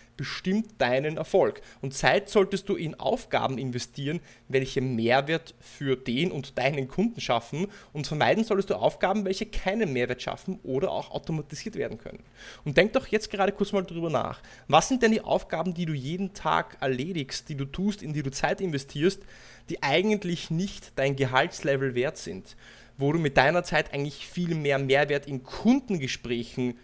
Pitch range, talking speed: 130-175 Hz, 170 wpm